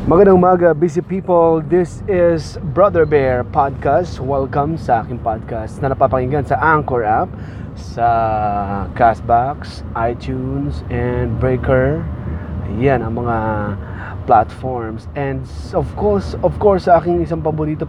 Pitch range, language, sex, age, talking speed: 110-145 Hz, Filipino, male, 20-39, 115 wpm